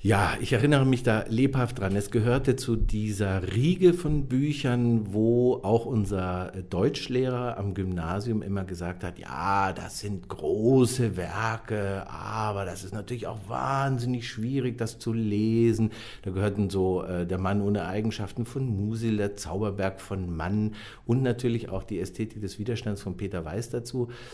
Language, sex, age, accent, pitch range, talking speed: German, male, 50-69, German, 100-125 Hz, 155 wpm